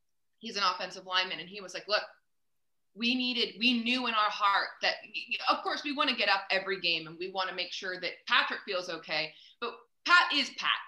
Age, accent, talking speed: 20-39, American, 220 wpm